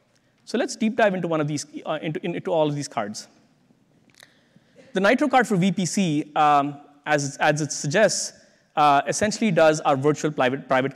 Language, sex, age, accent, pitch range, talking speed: English, male, 30-49, Indian, 140-180 Hz, 175 wpm